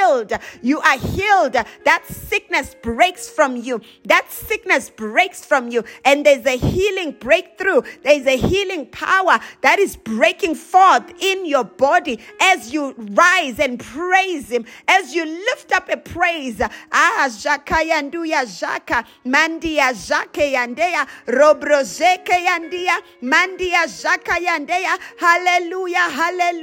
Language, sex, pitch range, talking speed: English, female, 290-360 Hz, 95 wpm